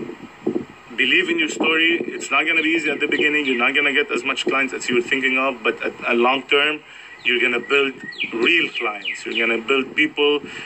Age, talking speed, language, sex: 30-49, 235 wpm, French, male